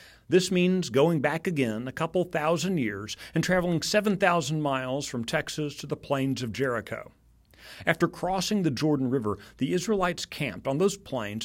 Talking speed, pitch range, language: 160 wpm, 120-175 Hz, English